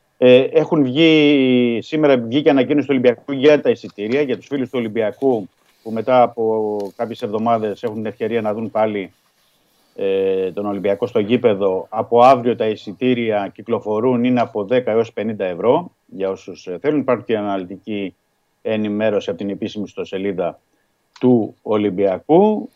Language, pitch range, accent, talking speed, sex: Greek, 105-135 Hz, native, 145 wpm, male